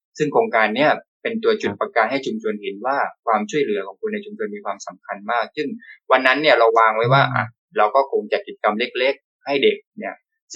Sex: male